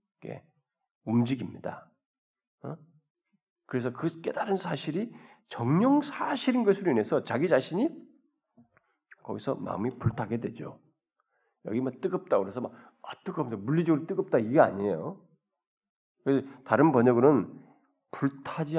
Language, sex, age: Korean, male, 40-59